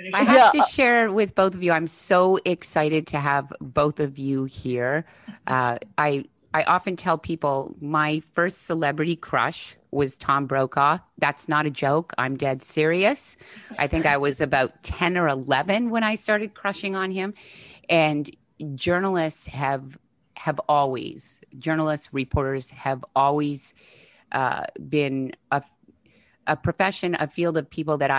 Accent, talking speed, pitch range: American, 150 wpm, 140-170 Hz